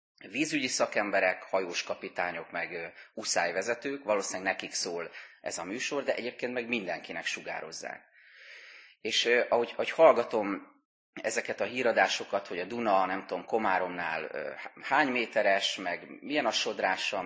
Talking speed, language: 125 wpm, Hungarian